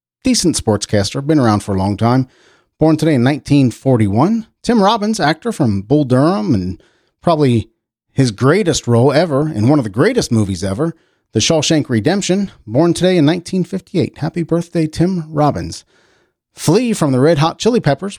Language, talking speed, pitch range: English, 160 wpm, 105-170 Hz